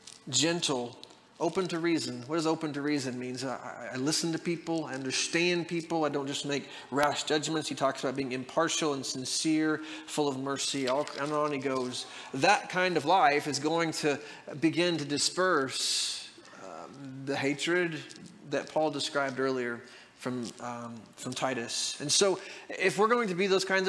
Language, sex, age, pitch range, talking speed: English, male, 30-49, 135-165 Hz, 175 wpm